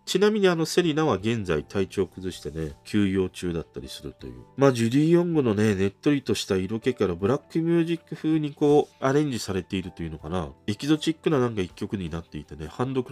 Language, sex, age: Japanese, male, 40-59